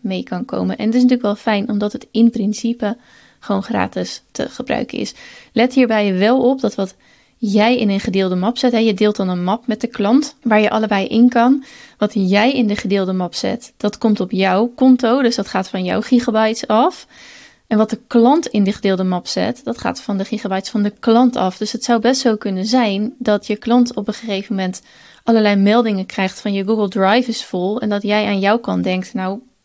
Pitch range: 200-235 Hz